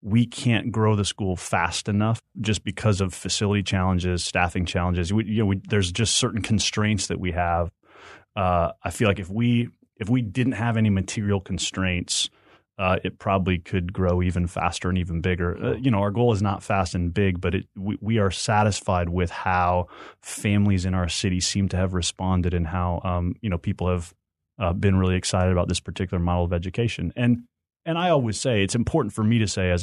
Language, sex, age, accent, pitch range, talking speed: English, male, 30-49, American, 90-110 Hz, 205 wpm